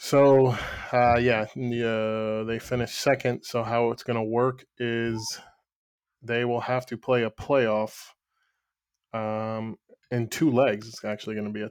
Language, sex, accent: English, male, American